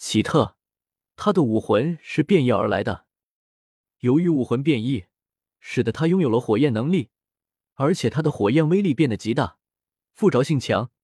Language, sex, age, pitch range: Chinese, male, 20-39, 110-160 Hz